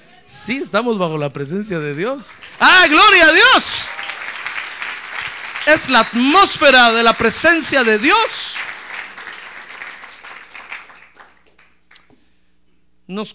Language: Spanish